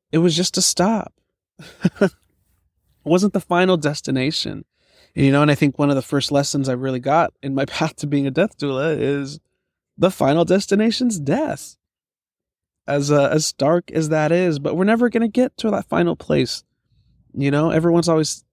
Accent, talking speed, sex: American, 190 wpm, male